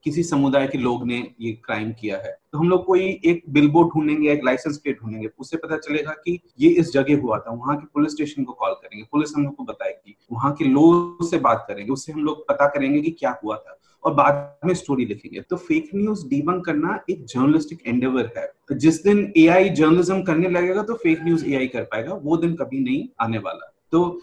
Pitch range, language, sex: 135-180 Hz, Hindi, male